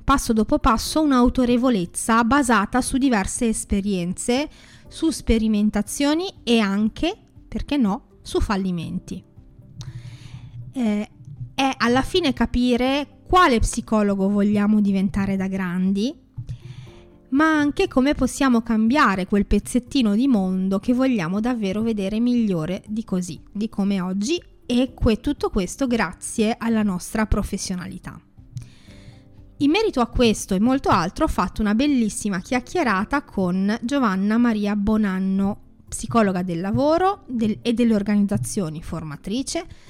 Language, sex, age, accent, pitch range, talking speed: Italian, female, 20-39, native, 195-260 Hz, 115 wpm